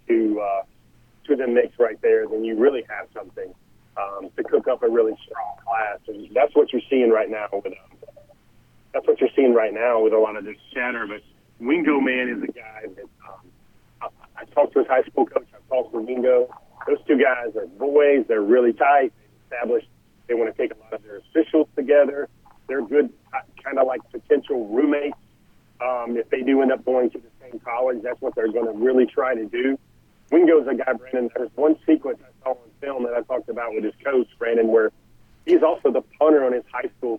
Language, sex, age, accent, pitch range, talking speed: English, male, 40-59, American, 120-155 Hz, 220 wpm